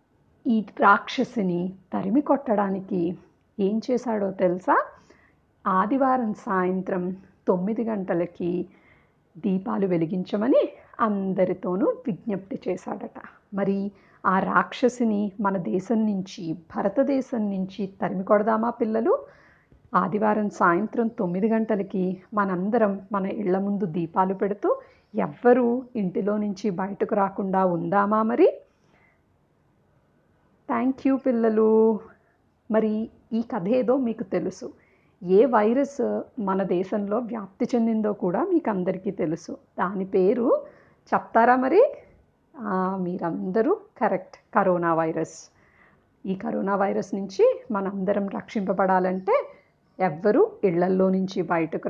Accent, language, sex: native, Telugu, female